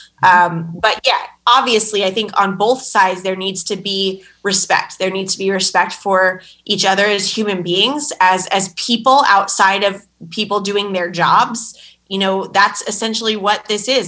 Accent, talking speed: American, 175 wpm